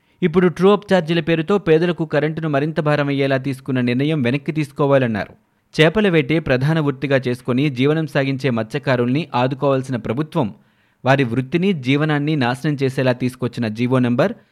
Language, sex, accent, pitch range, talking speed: Telugu, male, native, 130-160 Hz, 115 wpm